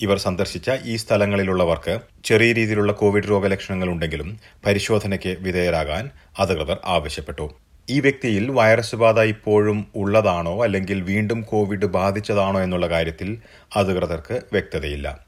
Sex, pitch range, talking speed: male, 85-110 Hz, 105 wpm